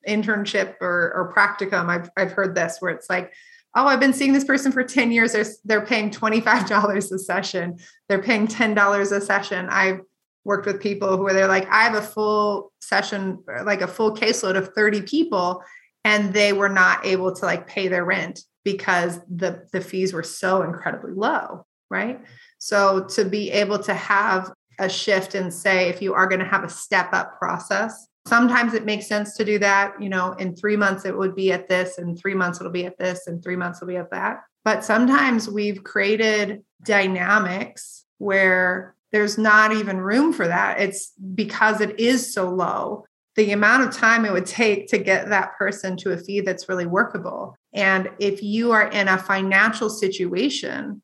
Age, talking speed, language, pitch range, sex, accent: 30-49, 195 wpm, English, 185-215 Hz, female, American